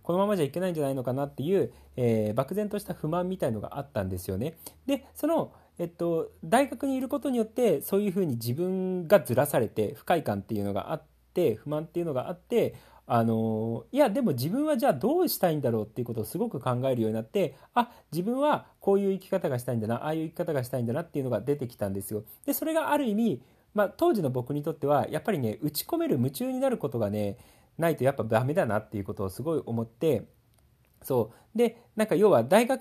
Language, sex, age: Japanese, male, 40-59